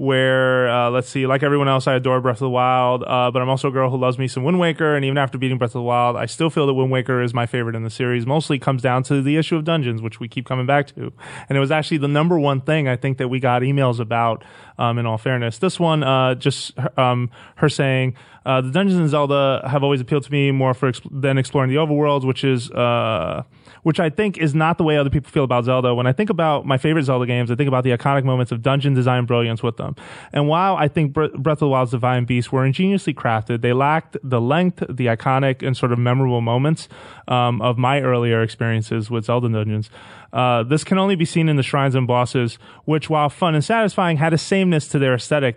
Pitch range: 125-150 Hz